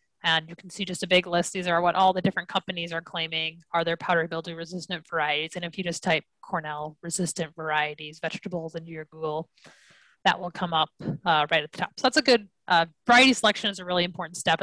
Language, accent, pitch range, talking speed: English, American, 170-210 Hz, 230 wpm